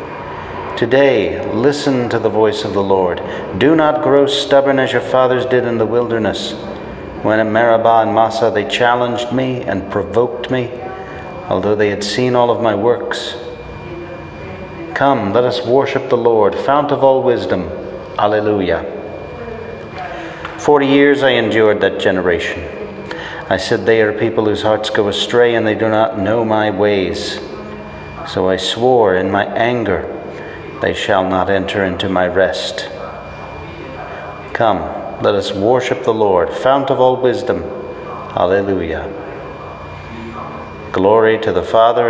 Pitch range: 105-130 Hz